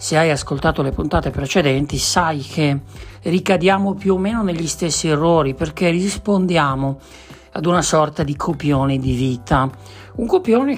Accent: native